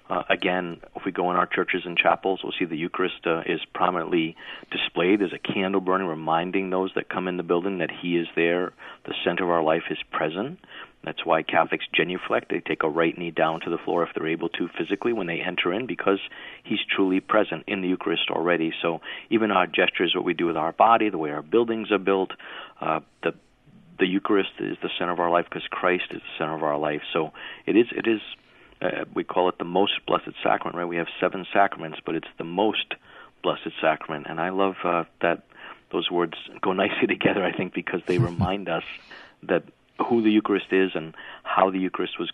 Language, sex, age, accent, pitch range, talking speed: English, male, 50-69, American, 85-95 Hz, 220 wpm